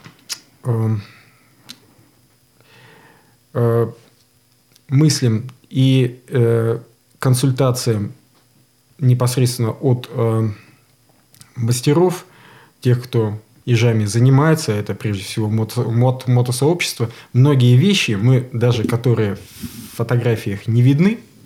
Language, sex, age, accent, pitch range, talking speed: Russian, male, 20-39, native, 115-140 Hz, 65 wpm